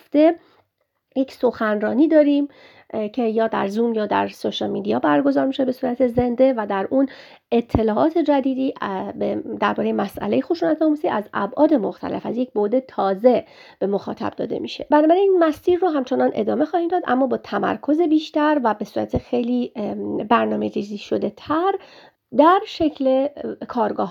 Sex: female